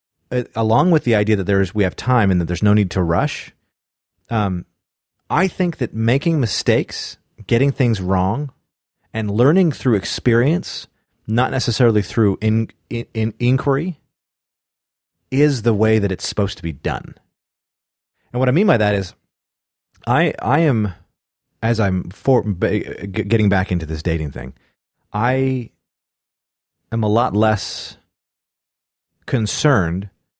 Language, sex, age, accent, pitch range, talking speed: English, male, 30-49, American, 90-120 Hz, 140 wpm